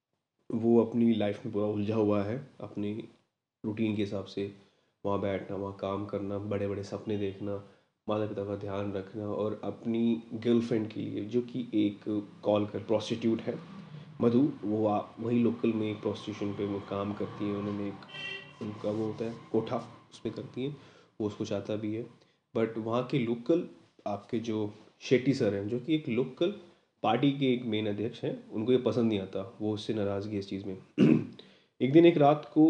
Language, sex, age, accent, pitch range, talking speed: Hindi, male, 20-39, native, 105-125 Hz, 185 wpm